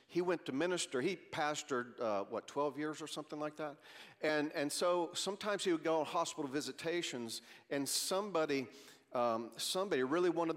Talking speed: 170 wpm